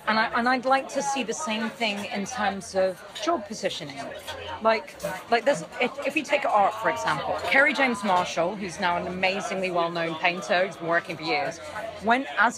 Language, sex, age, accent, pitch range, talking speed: English, female, 30-49, British, 185-255 Hz, 195 wpm